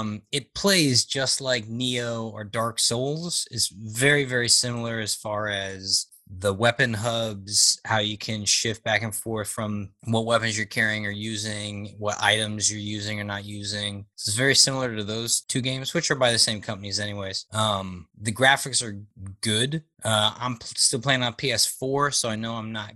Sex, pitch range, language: male, 105-130 Hz, English